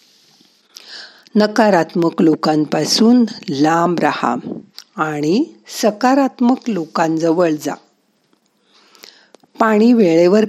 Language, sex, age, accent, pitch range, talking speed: Marathi, female, 50-69, native, 165-230 Hz, 55 wpm